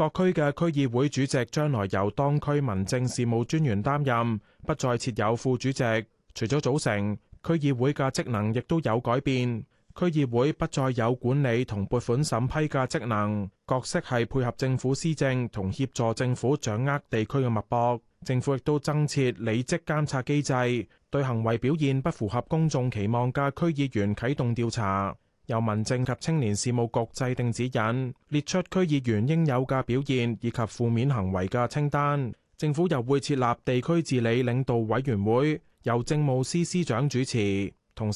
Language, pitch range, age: Chinese, 115-150 Hz, 20-39